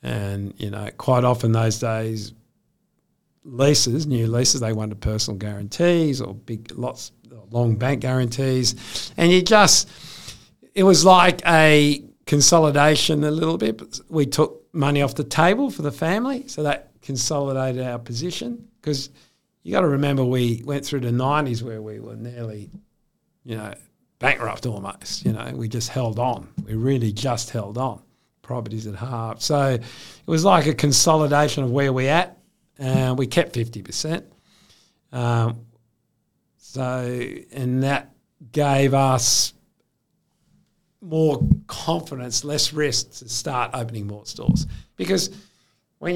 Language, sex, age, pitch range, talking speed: English, male, 50-69, 120-150 Hz, 140 wpm